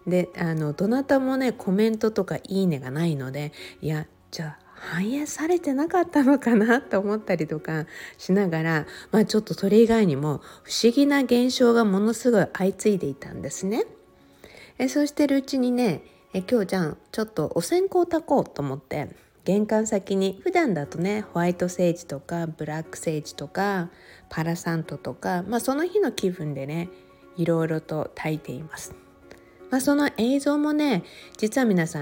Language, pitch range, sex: Japanese, 160-250 Hz, female